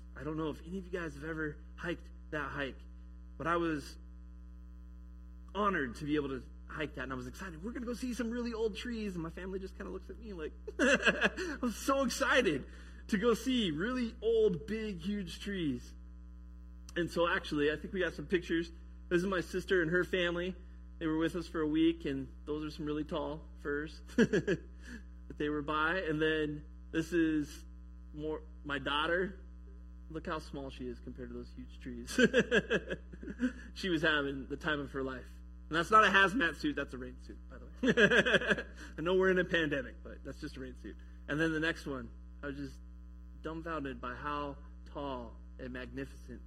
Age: 30-49